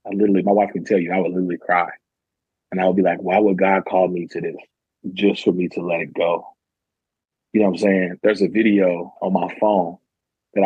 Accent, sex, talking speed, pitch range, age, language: American, male, 235 wpm, 95-110 Hz, 30-49, English